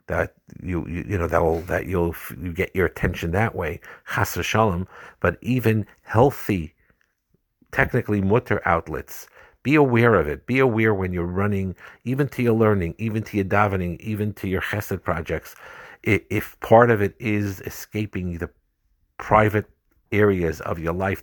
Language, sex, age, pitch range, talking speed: English, male, 50-69, 85-105 Hz, 160 wpm